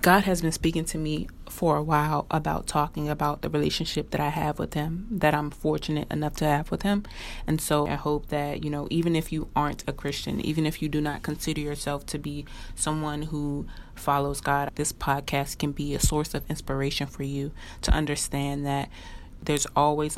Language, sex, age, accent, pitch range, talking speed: English, female, 30-49, American, 145-160 Hz, 200 wpm